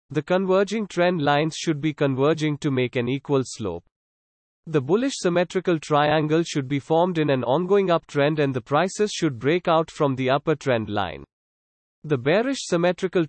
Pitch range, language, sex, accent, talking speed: 135-175 Hz, English, male, Indian, 165 wpm